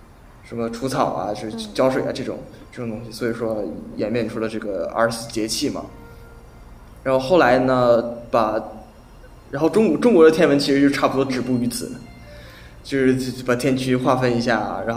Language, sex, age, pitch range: Chinese, male, 20-39, 110-130 Hz